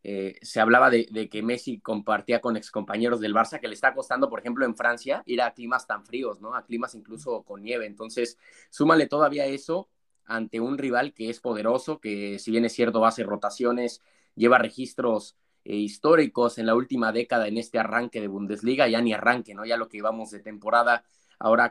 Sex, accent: male, Mexican